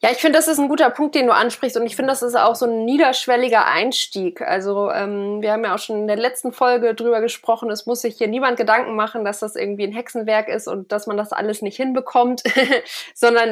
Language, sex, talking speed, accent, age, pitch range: German, female, 245 wpm, German, 20-39, 215-250 Hz